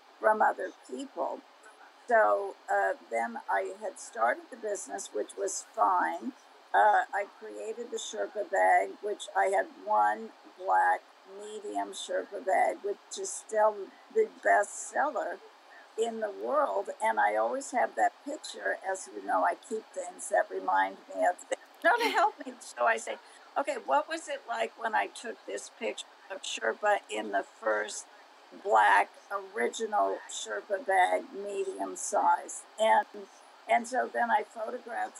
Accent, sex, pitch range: American, female, 195-280 Hz